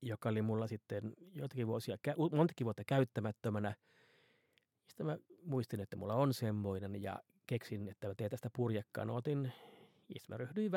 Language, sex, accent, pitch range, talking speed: Finnish, male, native, 105-135 Hz, 155 wpm